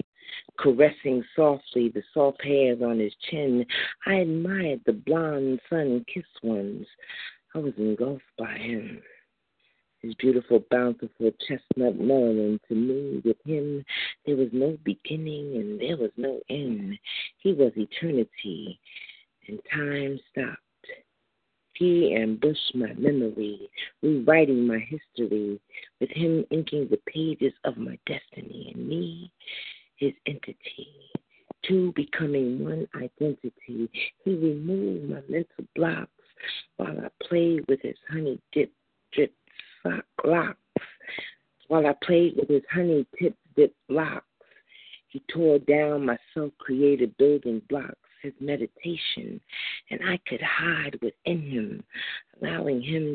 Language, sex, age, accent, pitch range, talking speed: English, female, 40-59, American, 125-165 Hz, 120 wpm